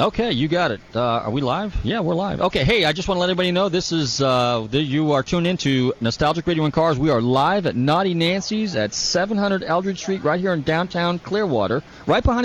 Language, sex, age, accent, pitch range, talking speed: English, male, 30-49, American, 120-185 Hz, 235 wpm